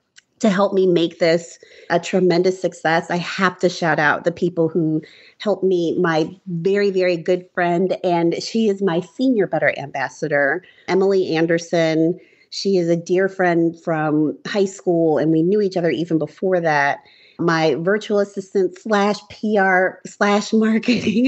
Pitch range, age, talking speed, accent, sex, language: 165-200 Hz, 30-49, 155 wpm, American, female, English